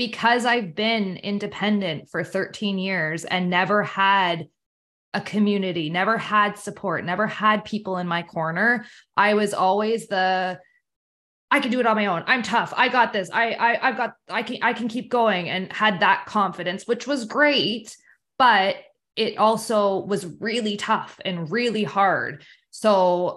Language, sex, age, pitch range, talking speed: English, female, 20-39, 180-215 Hz, 165 wpm